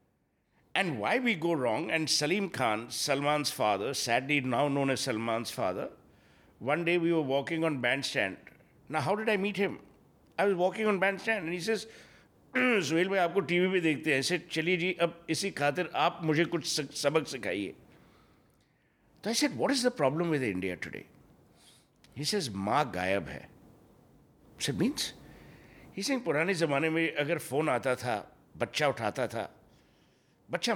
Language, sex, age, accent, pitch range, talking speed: Hindi, male, 60-79, native, 130-180 Hz, 175 wpm